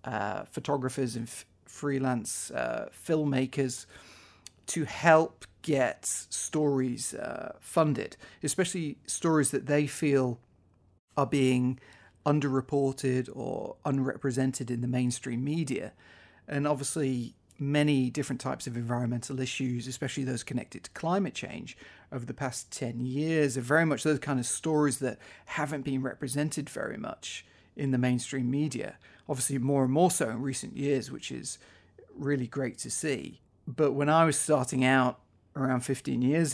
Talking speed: 140 wpm